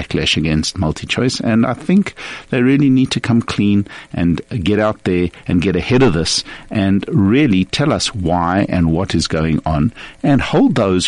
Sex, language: male, English